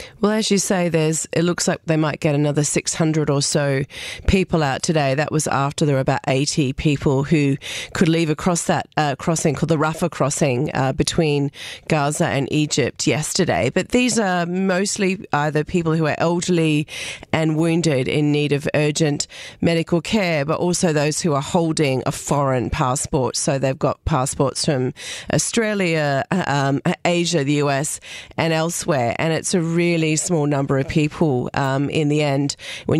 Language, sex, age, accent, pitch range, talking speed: English, female, 30-49, Australian, 145-165 Hz, 175 wpm